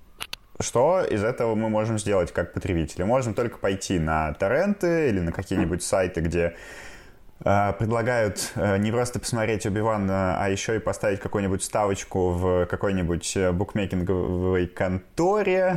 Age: 20-39